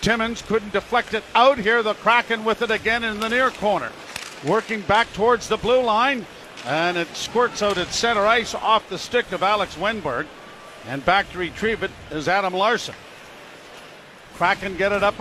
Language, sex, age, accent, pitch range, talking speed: English, male, 50-69, American, 195-225 Hz, 180 wpm